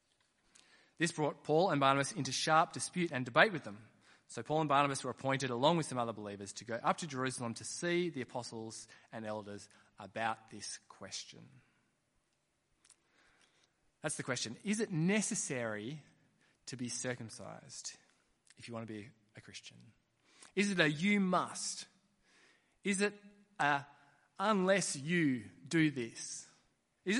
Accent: Australian